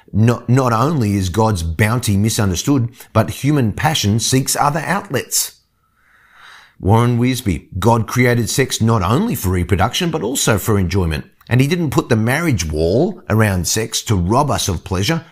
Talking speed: 155 wpm